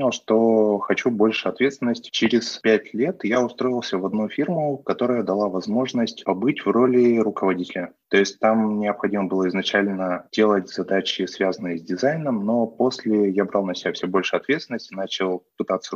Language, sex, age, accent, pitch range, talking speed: Russian, male, 20-39, native, 95-115 Hz, 155 wpm